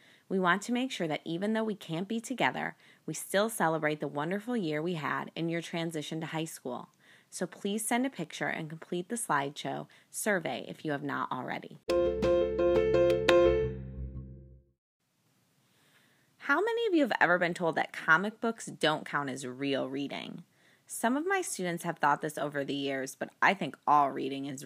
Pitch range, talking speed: 150-205 Hz, 180 wpm